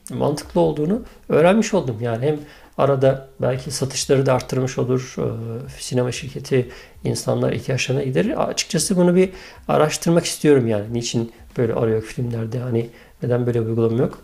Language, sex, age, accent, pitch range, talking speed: Turkish, male, 50-69, native, 115-145 Hz, 145 wpm